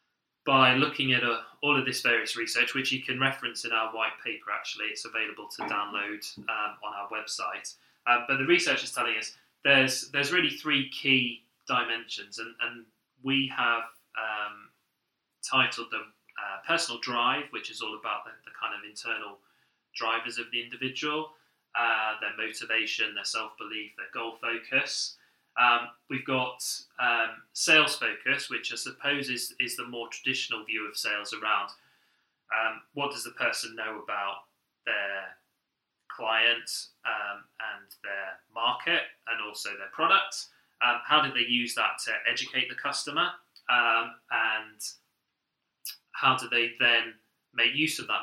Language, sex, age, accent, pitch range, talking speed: English, male, 30-49, British, 110-135 Hz, 155 wpm